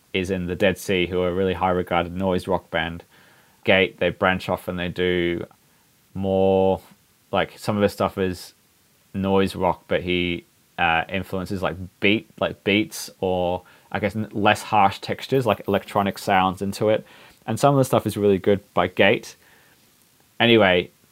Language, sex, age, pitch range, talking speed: English, male, 20-39, 90-105 Hz, 170 wpm